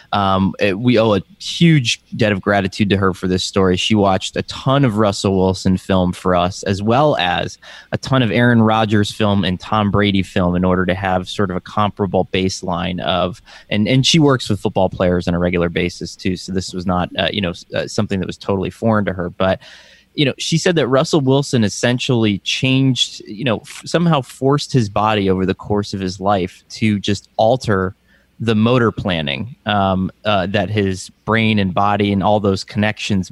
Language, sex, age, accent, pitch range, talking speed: English, male, 20-39, American, 95-110 Hz, 205 wpm